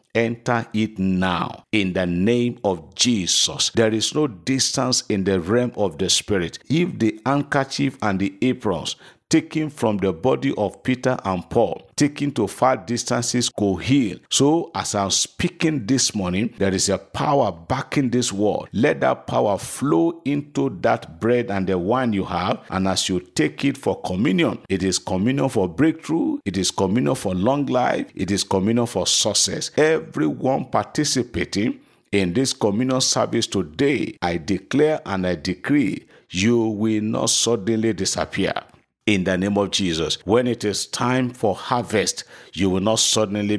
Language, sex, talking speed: English, male, 165 wpm